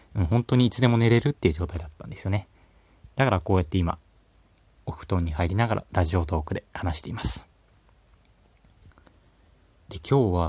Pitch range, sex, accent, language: 85-110 Hz, male, native, Japanese